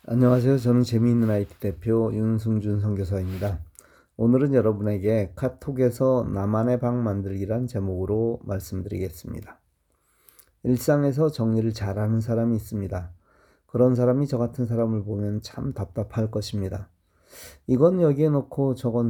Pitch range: 105-125 Hz